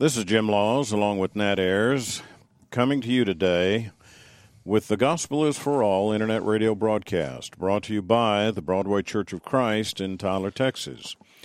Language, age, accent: English, 50-69, American